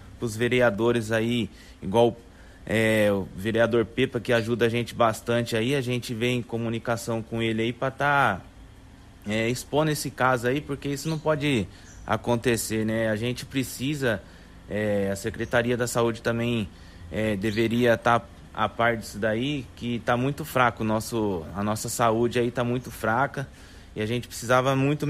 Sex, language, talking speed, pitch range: male, Portuguese, 170 wpm, 105-130 Hz